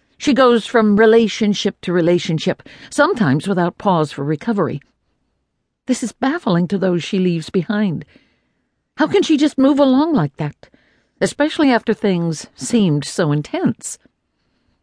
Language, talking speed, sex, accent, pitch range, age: English, 135 wpm, female, American, 175-275 Hz, 60-79